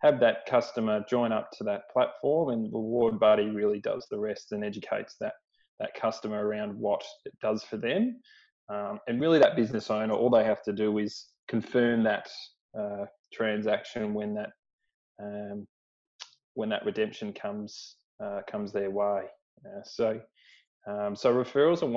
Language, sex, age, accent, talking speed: English, male, 20-39, Australian, 165 wpm